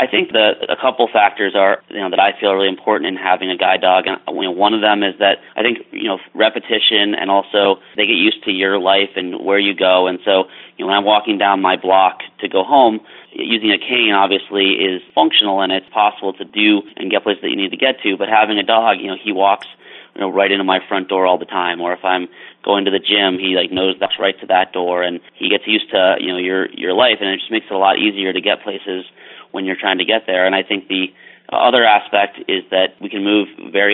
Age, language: 30-49, English